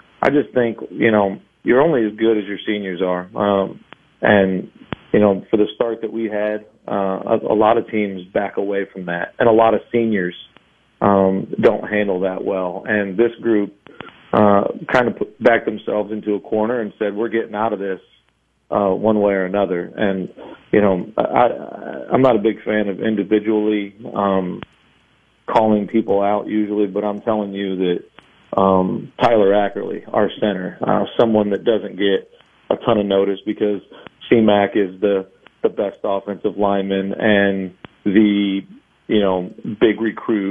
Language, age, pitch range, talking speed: English, 40-59, 95-105 Hz, 170 wpm